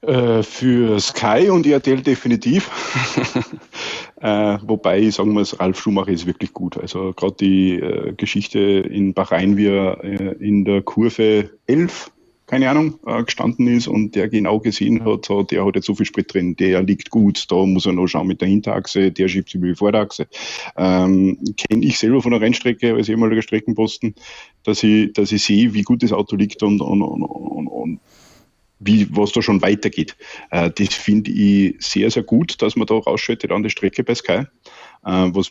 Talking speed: 190 wpm